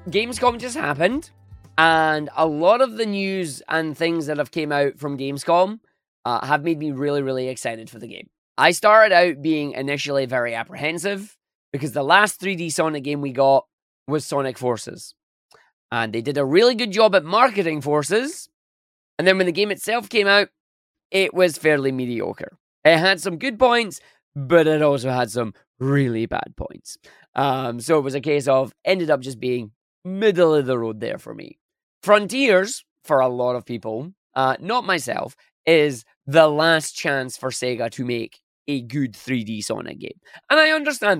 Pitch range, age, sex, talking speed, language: 130-185 Hz, 20-39, male, 180 wpm, English